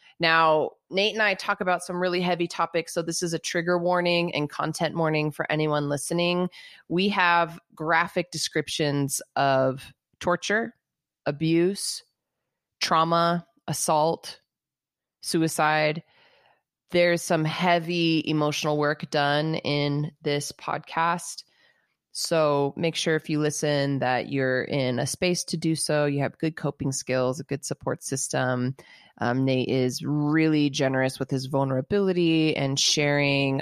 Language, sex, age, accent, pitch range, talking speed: English, female, 20-39, American, 140-170 Hz, 130 wpm